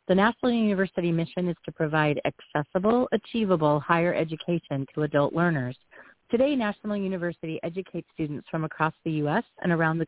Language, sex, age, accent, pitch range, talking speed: English, female, 40-59, American, 155-200 Hz, 155 wpm